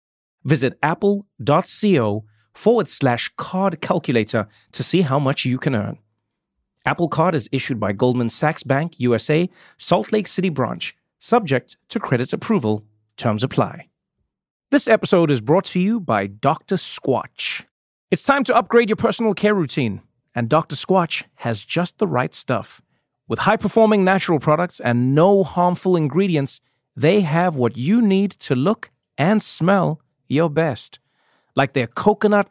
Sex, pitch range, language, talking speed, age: male, 125-190 Hz, English, 145 wpm, 30-49